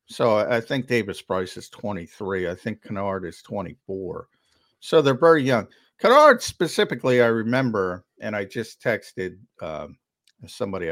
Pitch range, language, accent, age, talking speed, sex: 100-125 Hz, English, American, 50-69, 145 wpm, male